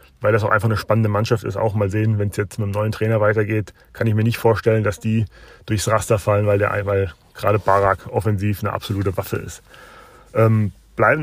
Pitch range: 110-155 Hz